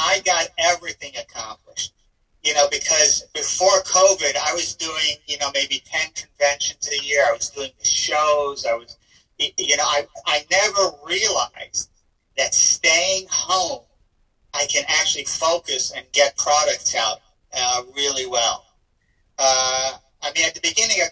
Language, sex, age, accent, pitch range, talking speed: English, male, 50-69, American, 130-160 Hz, 150 wpm